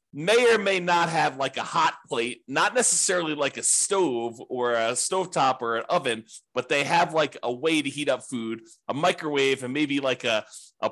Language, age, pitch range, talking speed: English, 30-49, 130-180 Hz, 205 wpm